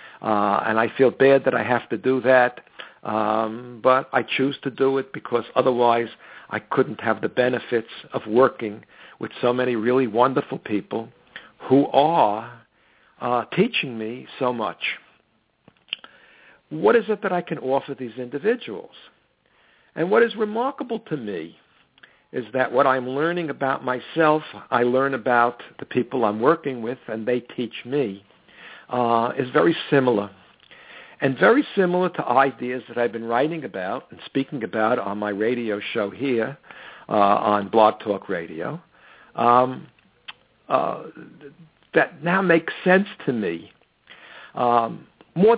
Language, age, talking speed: English, 60-79, 145 wpm